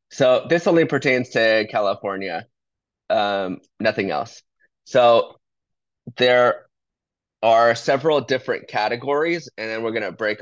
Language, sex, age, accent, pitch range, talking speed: English, male, 20-39, American, 105-125 Hz, 115 wpm